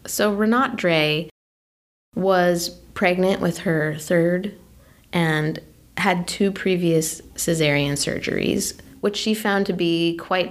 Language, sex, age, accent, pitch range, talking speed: English, female, 20-39, American, 155-190 Hz, 115 wpm